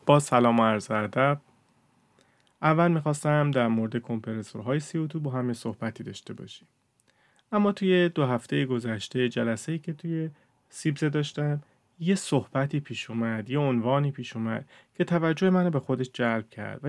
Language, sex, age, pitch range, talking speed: Persian, male, 30-49, 115-155 Hz, 150 wpm